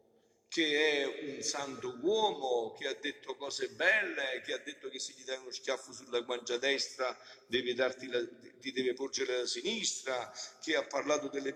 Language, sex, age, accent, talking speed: Italian, male, 50-69, native, 175 wpm